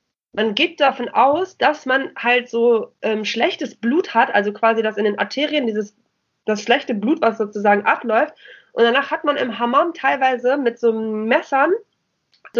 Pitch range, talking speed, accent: 200-255 Hz, 170 wpm, German